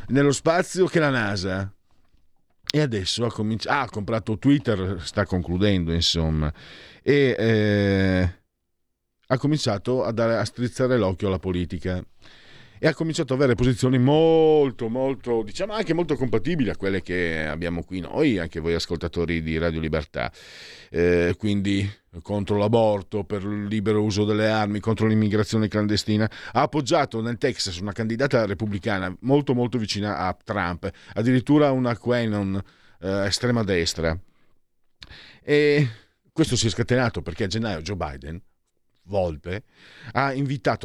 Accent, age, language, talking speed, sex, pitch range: native, 50-69, Italian, 140 wpm, male, 90-125 Hz